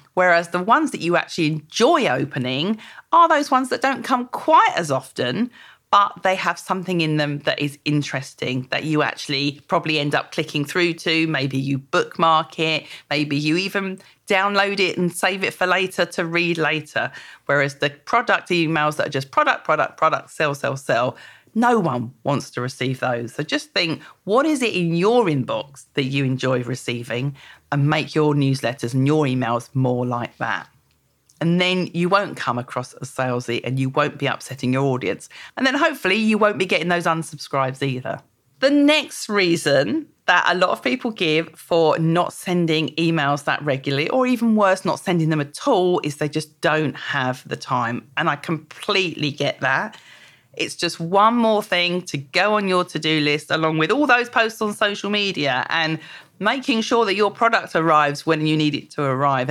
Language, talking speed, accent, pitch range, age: English, 190 wpm, British, 140-200 Hz, 40-59